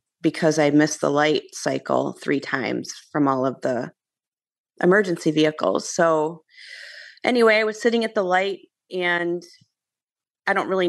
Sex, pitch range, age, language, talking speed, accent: female, 155-195 Hz, 30-49, English, 145 wpm, American